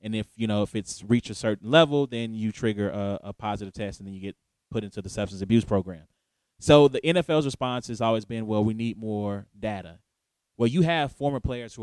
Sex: male